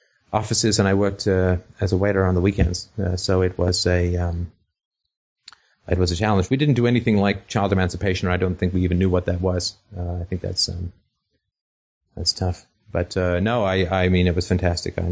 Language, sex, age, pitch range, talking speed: English, male, 30-49, 90-105 Hz, 220 wpm